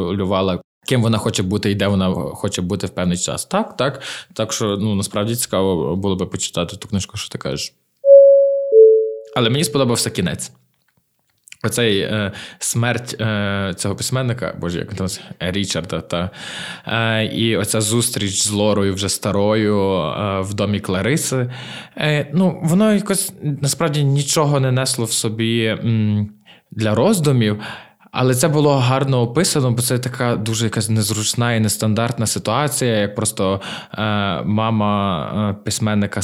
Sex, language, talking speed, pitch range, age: male, Ukrainian, 140 wpm, 100-125 Hz, 20-39